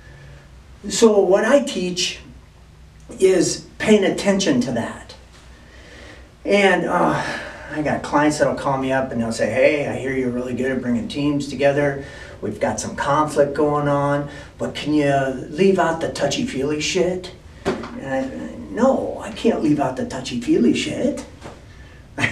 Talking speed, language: 155 wpm, English